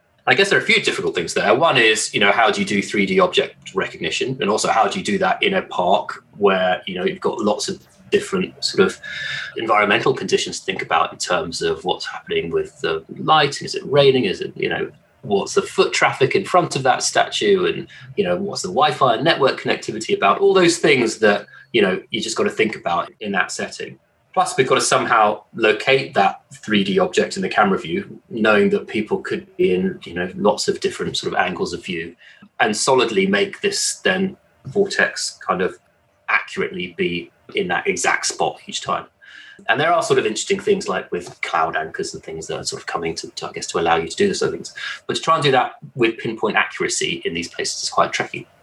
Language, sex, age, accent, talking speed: English, male, 30-49, British, 225 wpm